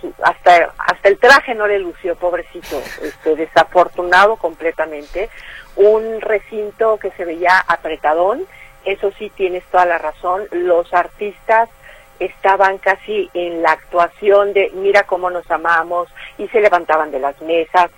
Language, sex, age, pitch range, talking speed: Spanish, female, 50-69, 165-200 Hz, 135 wpm